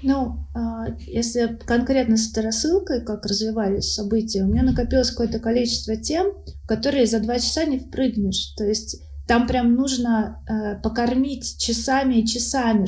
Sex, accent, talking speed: female, native, 145 wpm